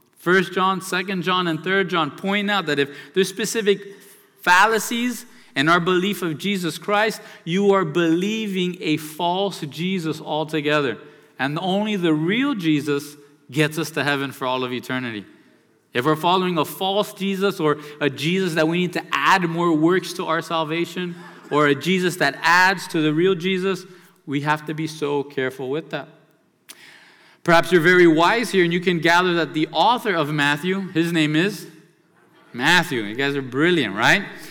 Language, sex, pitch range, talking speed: English, male, 155-195 Hz, 170 wpm